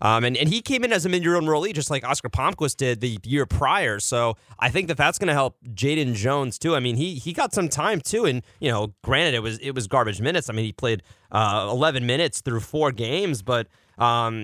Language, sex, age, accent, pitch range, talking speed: English, male, 30-49, American, 110-145 Hz, 250 wpm